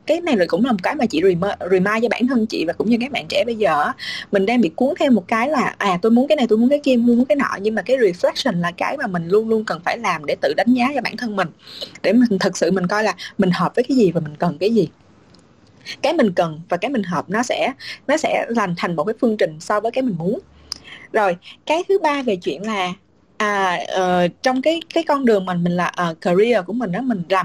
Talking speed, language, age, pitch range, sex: 280 wpm, Vietnamese, 20-39, 185-265 Hz, female